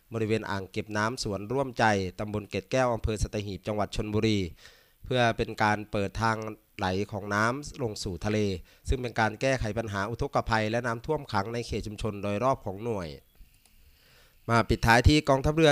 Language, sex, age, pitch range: Thai, male, 20-39, 105-125 Hz